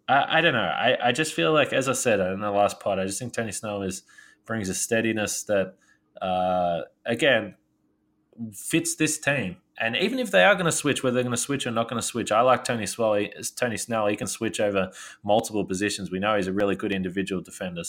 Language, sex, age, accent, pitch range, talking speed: English, male, 20-39, Australian, 100-120 Hz, 220 wpm